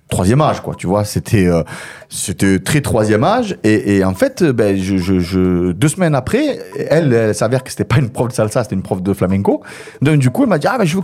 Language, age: French, 30-49